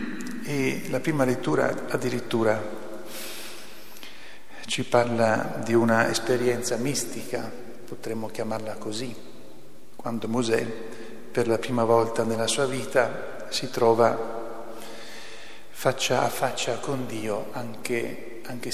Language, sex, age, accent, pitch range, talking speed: Italian, male, 50-69, native, 115-125 Hz, 100 wpm